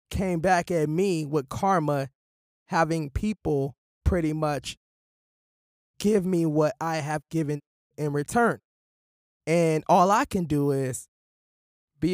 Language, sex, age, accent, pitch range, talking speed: English, male, 20-39, American, 130-170 Hz, 125 wpm